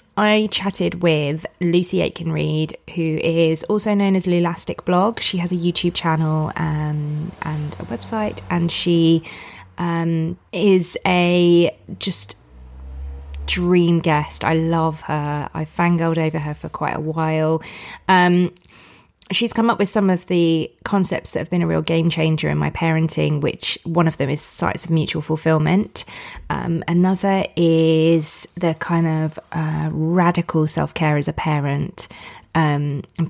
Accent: British